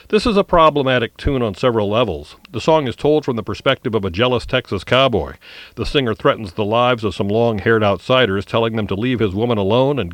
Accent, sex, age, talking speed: American, male, 50-69, 220 wpm